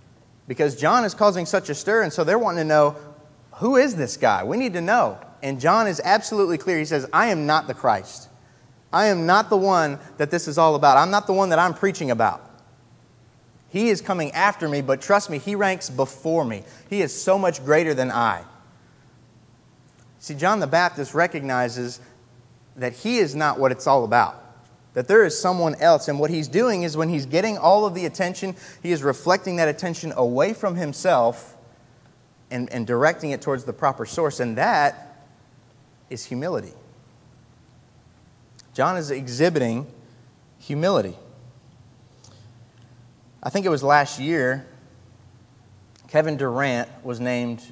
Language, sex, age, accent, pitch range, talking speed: English, male, 30-49, American, 125-170 Hz, 170 wpm